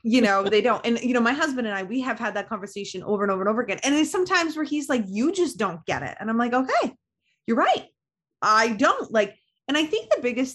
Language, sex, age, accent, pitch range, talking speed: English, female, 20-39, American, 190-265 Hz, 265 wpm